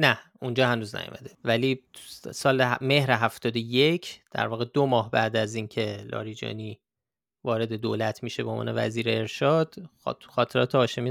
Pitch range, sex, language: 115-145 Hz, male, Persian